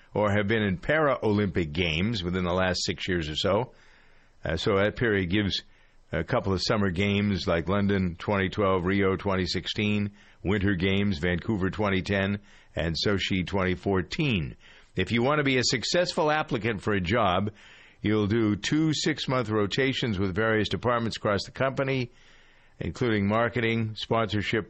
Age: 50-69